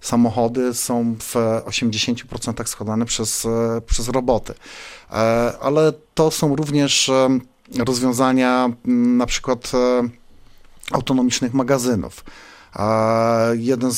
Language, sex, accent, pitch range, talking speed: Polish, male, native, 120-135 Hz, 75 wpm